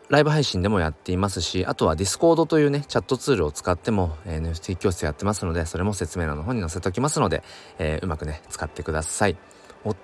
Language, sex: Japanese, male